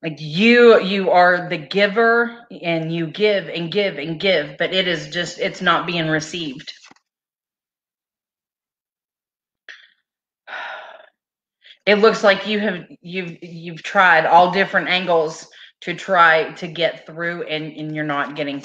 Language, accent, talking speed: English, American, 135 wpm